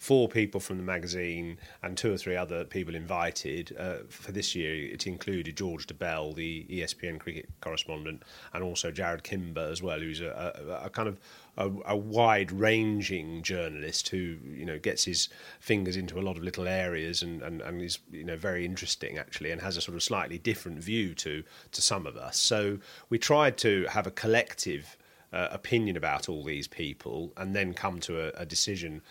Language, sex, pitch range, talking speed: English, male, 85-110 Hz, 195 wpm